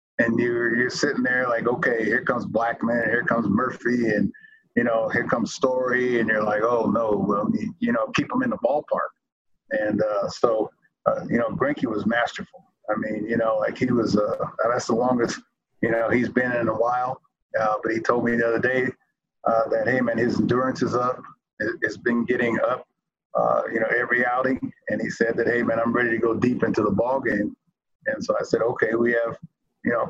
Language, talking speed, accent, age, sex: English, 215 wpm, American, 30-49, male